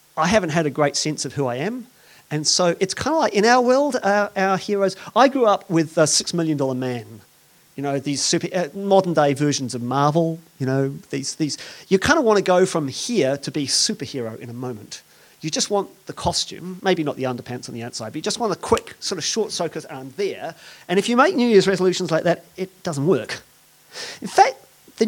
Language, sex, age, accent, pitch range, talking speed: English, male, 40-59, British, 145-230 Hz, 235 wpm